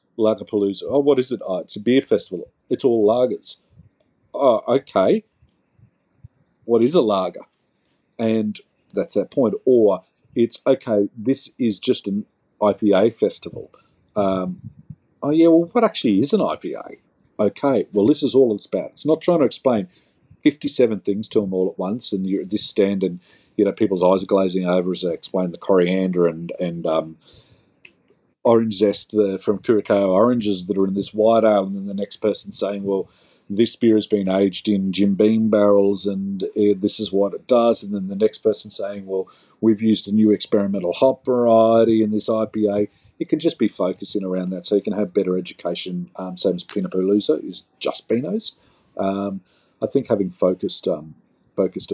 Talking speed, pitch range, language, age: 185 wpm, 95-110 Hz, English, 40-59